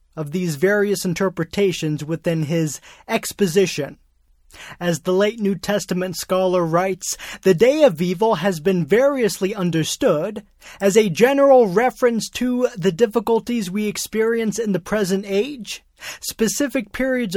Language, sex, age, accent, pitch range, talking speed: English, male, 20-39, American, 160-230 Hz, 130 wpm